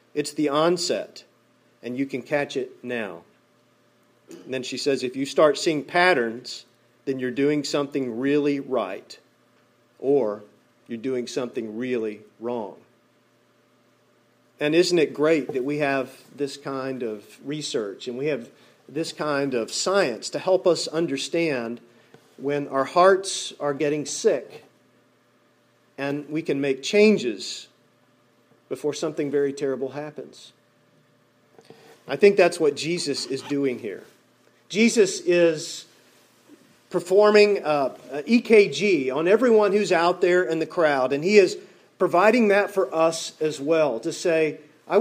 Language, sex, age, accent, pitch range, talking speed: English, male, 40-59, American, 125-190 Hz, 135 wpm